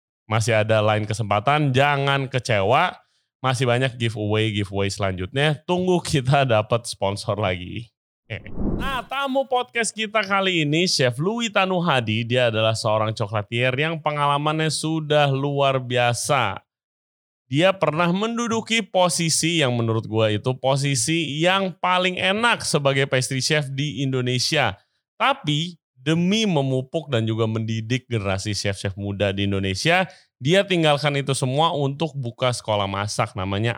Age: 30-49